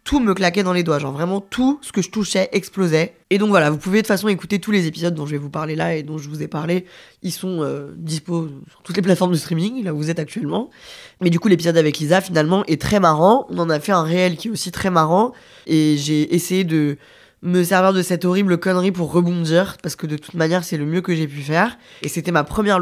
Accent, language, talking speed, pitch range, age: French, French, 270 wpm, 165-205 Hz, 20-39